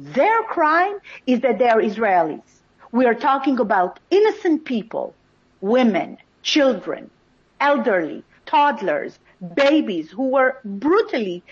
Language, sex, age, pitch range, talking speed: English, female, 50-69, 225-300 Hz, 110 wpm